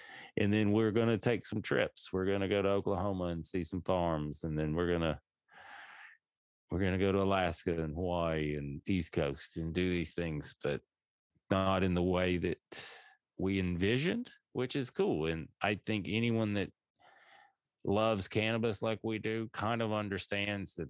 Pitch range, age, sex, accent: 85-100 Hz, 30-49, male, American